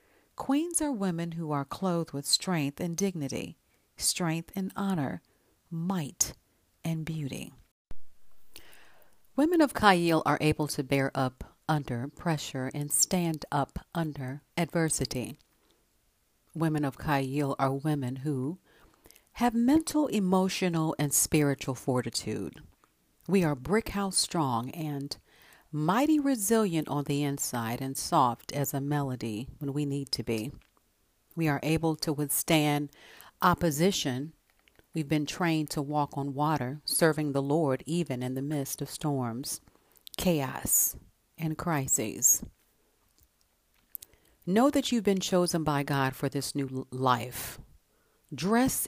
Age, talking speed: 50-69, 125 wpm